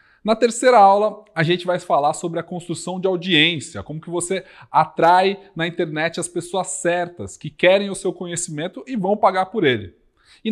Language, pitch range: Portuguese, 160-205 Hz